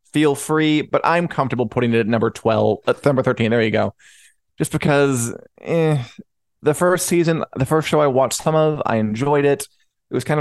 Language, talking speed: English, 200 wpm